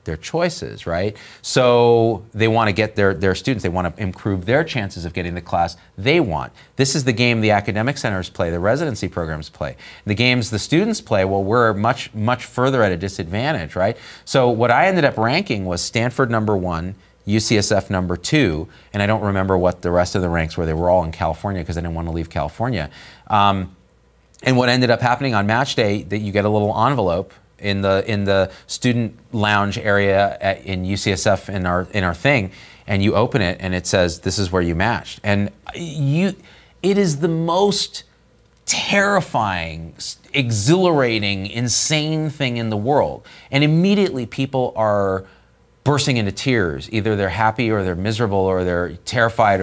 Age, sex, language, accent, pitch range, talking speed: 30-49, male, English, American, 95-125 Hz, 185 wpm